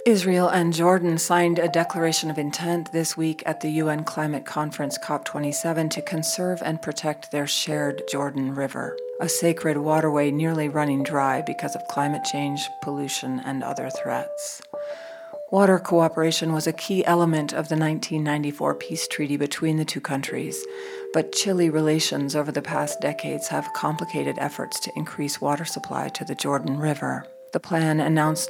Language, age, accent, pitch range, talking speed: English, 40-59, American, 145-165 Hz, 155 wpm